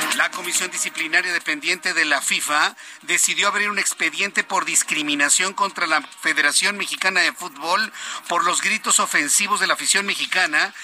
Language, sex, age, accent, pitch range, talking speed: Spanish, male, 50-69, Mexican, 175-220 Hz, 150 wpm